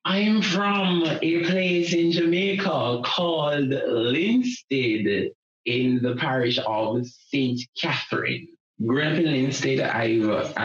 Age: 20-39